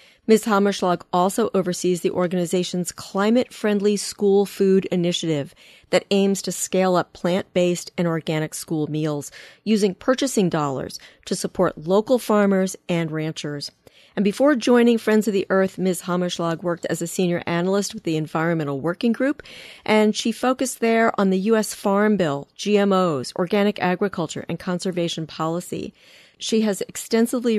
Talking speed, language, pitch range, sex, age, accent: 145 wpm, English, 165-210 Hz, female, 40-59, American